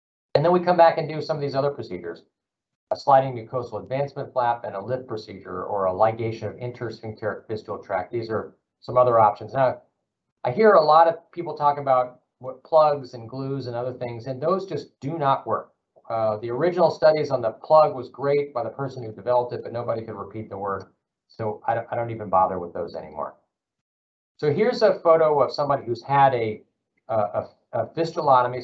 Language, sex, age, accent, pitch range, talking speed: English, male, 40-59, American, 110-145 Hz, 205 wpm